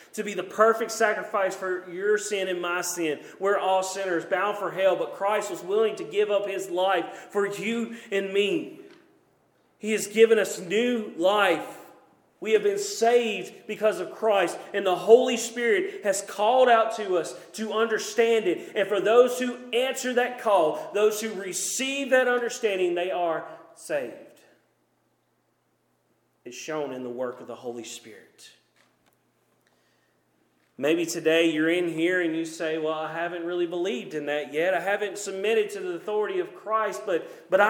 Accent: American